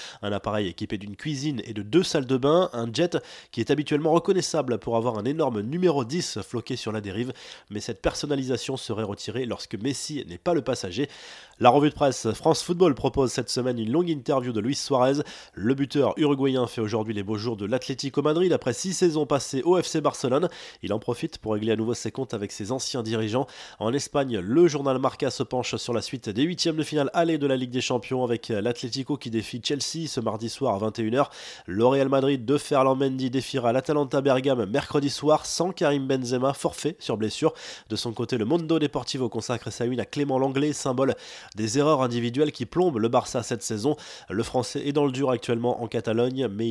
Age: 20-39